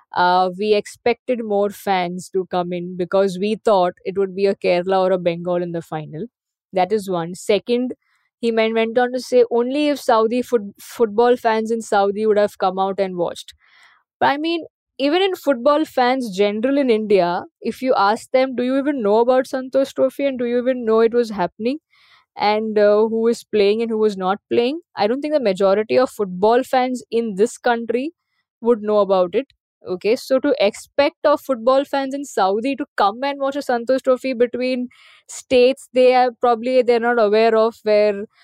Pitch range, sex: 195-260 Hz, female